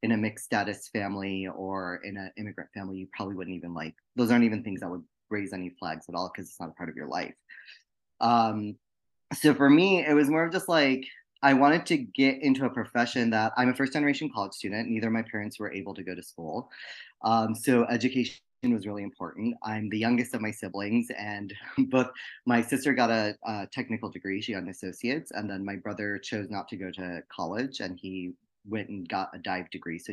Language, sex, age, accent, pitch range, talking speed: English, male, 20-39, American, 100-155 Hz, 225 wpm